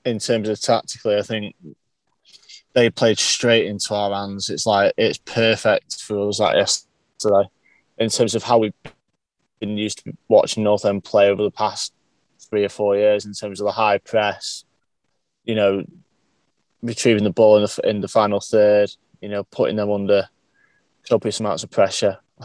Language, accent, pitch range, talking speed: English, British, 105-115 Hz, 175 wpm